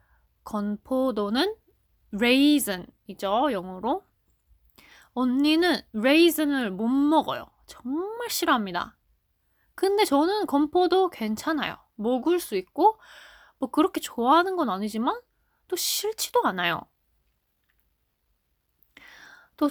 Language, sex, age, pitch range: Korean, female, 20-39, 215-330 Hz